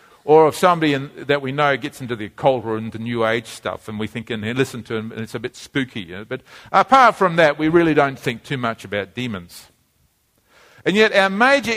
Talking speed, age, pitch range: 240 wpm, 50-69, 120-160 Hz